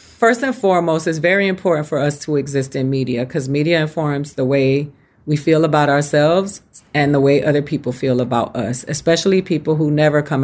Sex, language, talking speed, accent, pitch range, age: female, English, 195 wpm, American, 140-175 Hz, 40-59